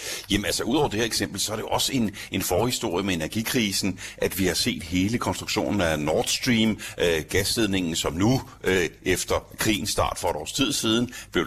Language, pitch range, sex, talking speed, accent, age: Danish, 95-115 Hz, male, 210 wpm, native, 60-79